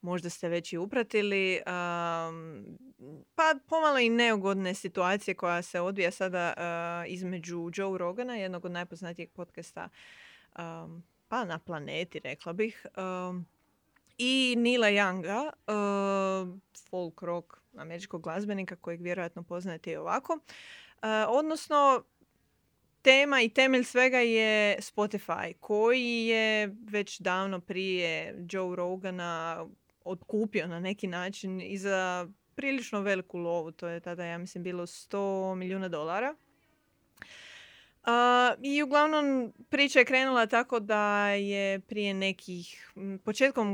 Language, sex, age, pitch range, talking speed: Croatian, female, 20-39, 180-225 Hz, 120 wpm